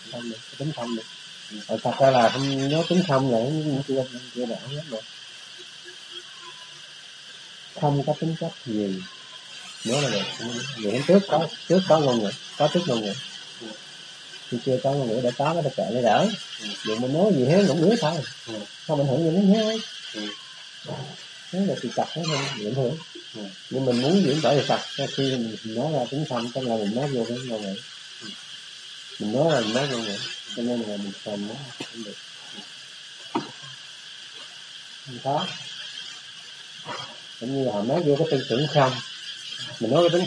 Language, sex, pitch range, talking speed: Vietnamese, male, 120-155 Hz, 150 wpm